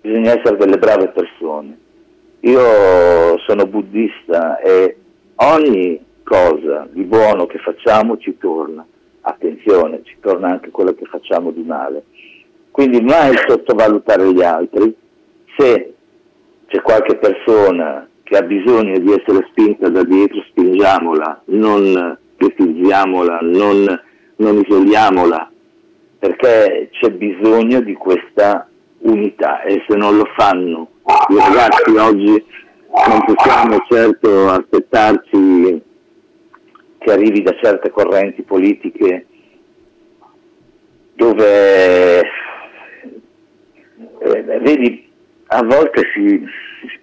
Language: Italian